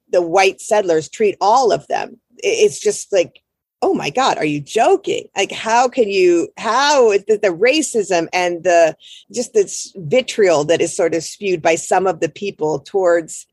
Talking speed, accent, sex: 180 wpm, American, female